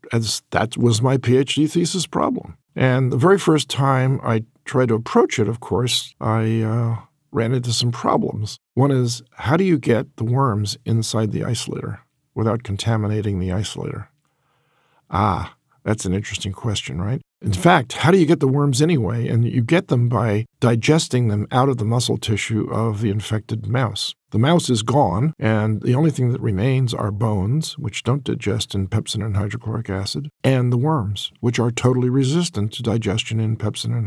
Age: 50-69